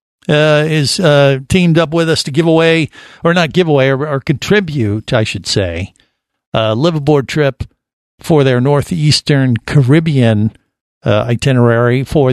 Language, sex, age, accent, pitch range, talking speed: English, male, 50-69, American, 115-155 Hz, 145 wpm